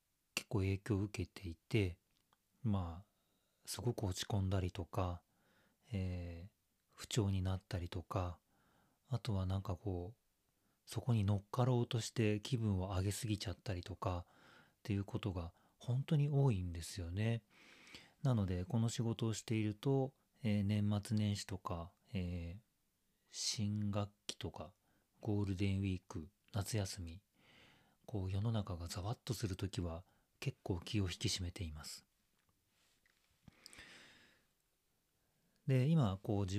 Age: 40-59